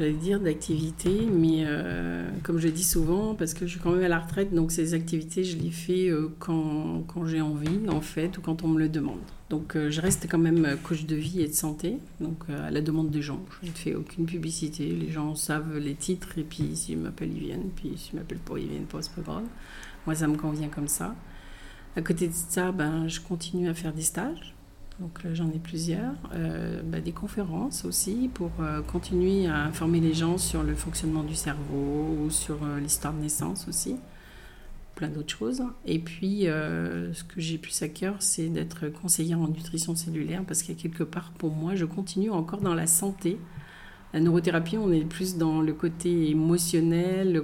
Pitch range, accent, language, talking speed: 155-175 Hz, French, French, 215 wpm